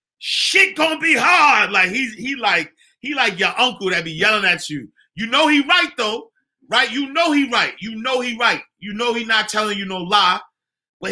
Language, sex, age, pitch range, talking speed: English, male, 30-49, 180-280 Hz, 235 wpm